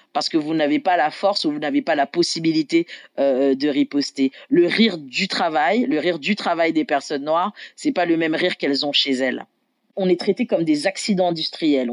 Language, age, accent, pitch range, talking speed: French, 40-59, French, 160-260 Hz, 220 wpm